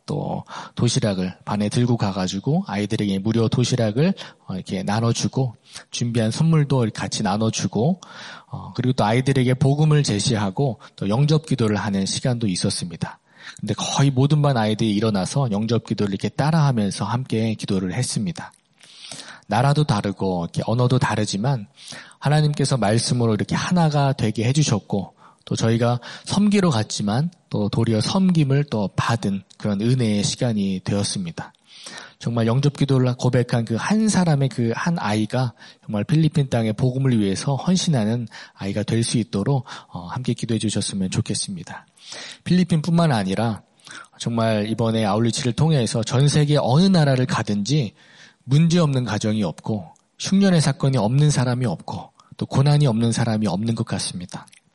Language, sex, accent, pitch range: Korean, male, native, 105-145 Hz